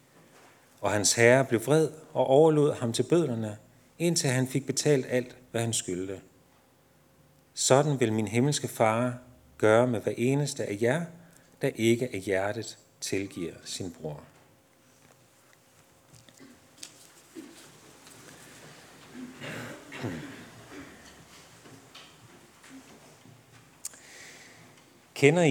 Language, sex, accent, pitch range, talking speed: Danish, male, native, 105-140 Hz, 85 wpm